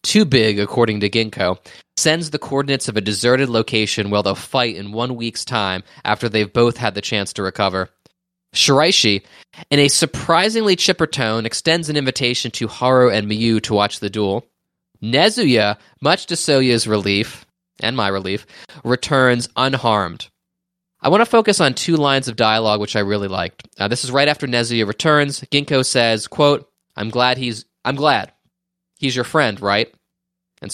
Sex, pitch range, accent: male, 110-145 Hz, American